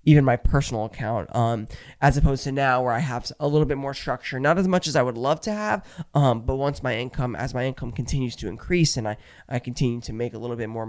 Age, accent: 20-39, American